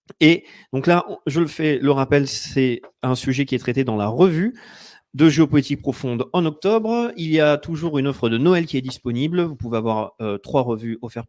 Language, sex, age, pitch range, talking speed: French, male, 30-49, 120-165 Hz, 215 wpm